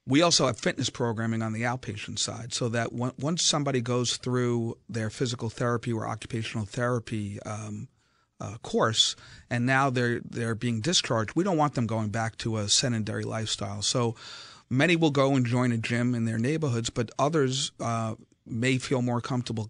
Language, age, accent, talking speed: English, 40-59, American, 185 wpm